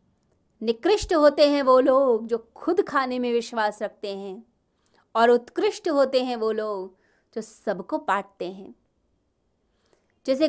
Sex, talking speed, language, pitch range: female, 130 wpm, Hindi, 215-275 Hz